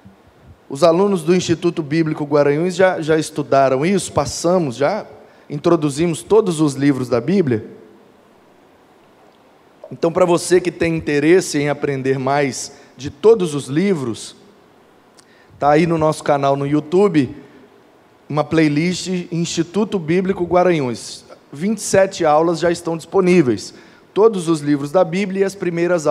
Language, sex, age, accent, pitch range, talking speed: Portuguese, male, 20-39, Brazilian, 150-185 Hz, 130 wpm